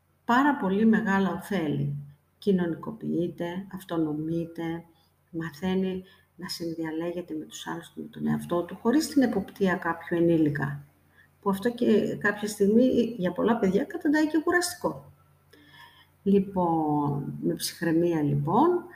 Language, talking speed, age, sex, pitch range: Greek, 115 wpm, 50-69, female, 155-215 Hz